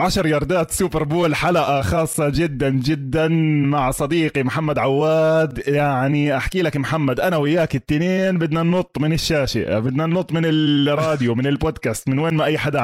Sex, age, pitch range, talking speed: male, 20-39, 125-165 Hz, 160 wpm